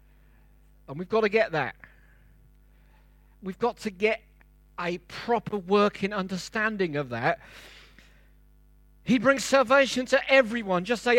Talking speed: 125 wpm